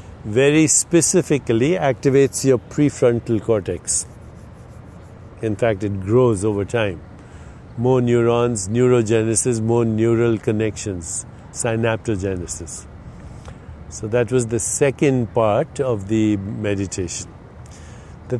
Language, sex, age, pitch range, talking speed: English, male, 50-69, 105-135 Hz, 95 wpm